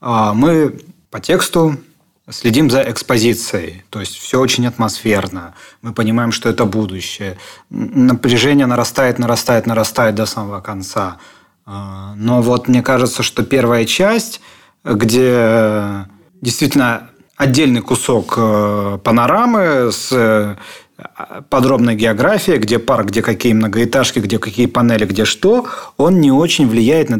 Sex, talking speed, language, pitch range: male, 115 wpm, Russian, 105-125 Hz